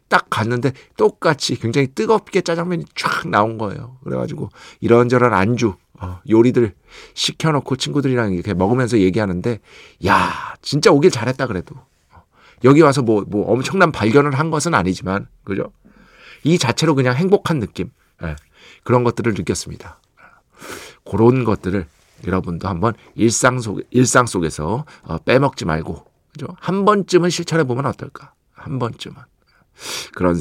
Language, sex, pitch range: Korean, male, 100-140 Hz